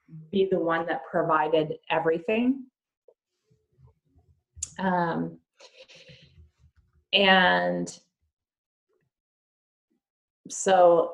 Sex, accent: female, American